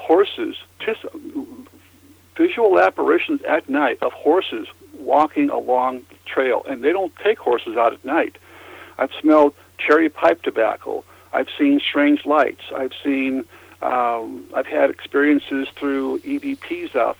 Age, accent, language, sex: 60-79, American, English, male